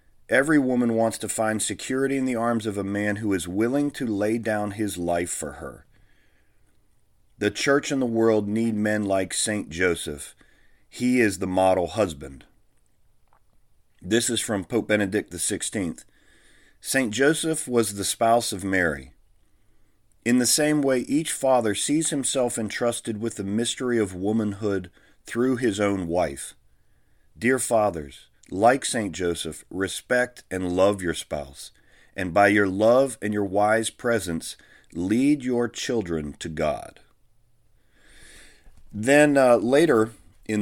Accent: American